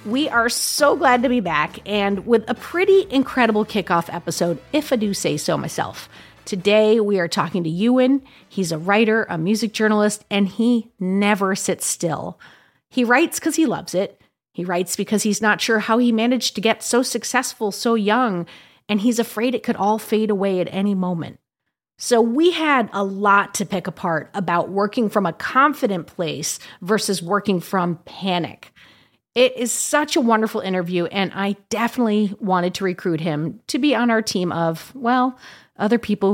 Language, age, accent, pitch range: English, 30-49, American, 180-240 Hz